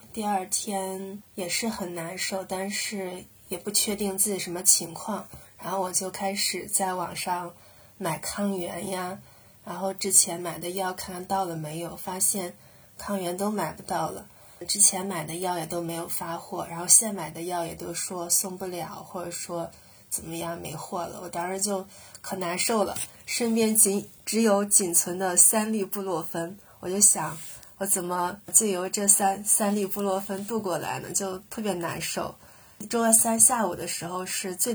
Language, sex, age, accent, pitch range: Chinese, female, 20-39, native, 175-200 Hz